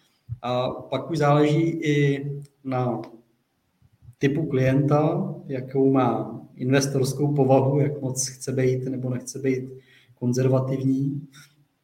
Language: Czech